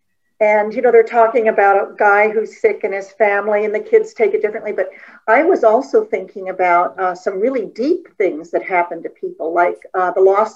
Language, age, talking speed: English, 50-69, 215 wpm